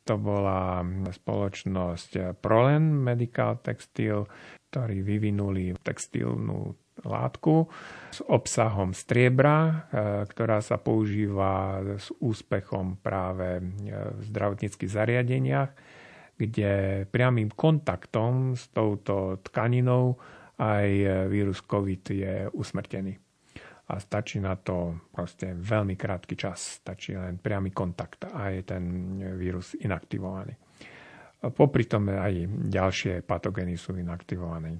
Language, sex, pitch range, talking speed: Slovak, male, 95-115 Hz, 100 wpm